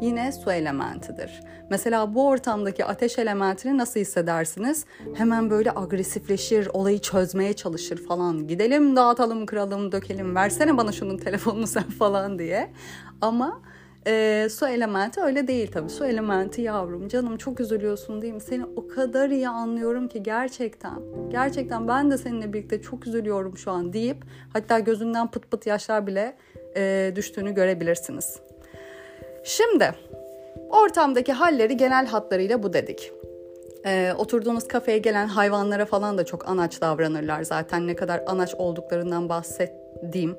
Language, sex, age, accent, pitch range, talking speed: Turkish, female, 30-49, native, 175-235 Hz, 135 wpm